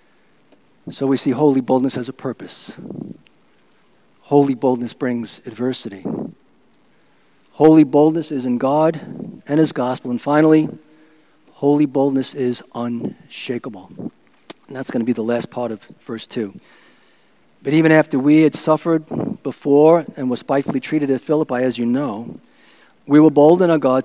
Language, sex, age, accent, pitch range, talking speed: English, male, 50-69, American, 140-210 Hz, 145 wpm